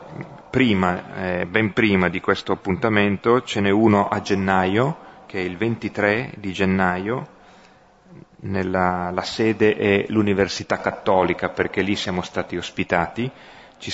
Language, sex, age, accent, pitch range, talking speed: Italian, male, 30-49, native, 90-100 Hz, 130 wpm